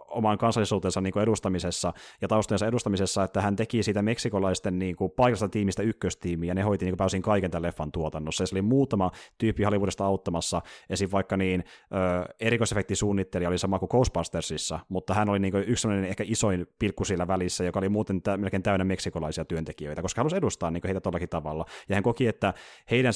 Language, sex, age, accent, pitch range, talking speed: Finnish, male, 30-49, native, 90-105 Hz, 190 wpm